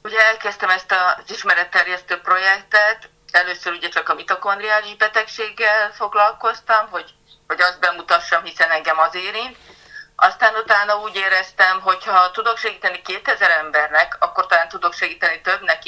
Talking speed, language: 135 wpm, Hungarian